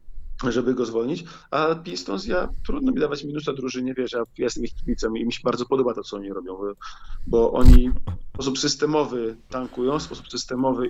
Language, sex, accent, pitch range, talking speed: Polish, male, native, 115-130 Hz, 185 wpm